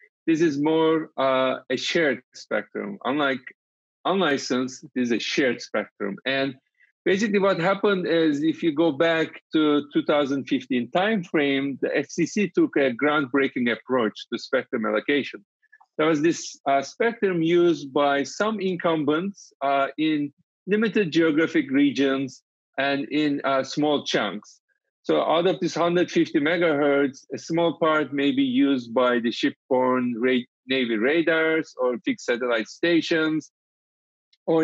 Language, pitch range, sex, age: English, 135-170 Hz, male, 50-69